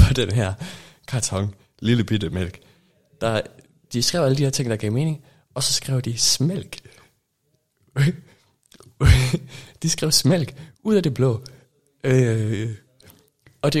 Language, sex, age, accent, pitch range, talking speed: Danish, male, 20-39, native, 105-135 Hz, 135 wpm